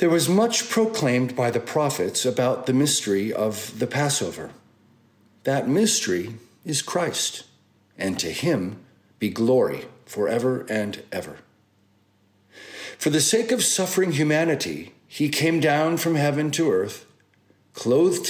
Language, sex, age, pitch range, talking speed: English, male, 50-69, 110-155 Hz, 130 wpm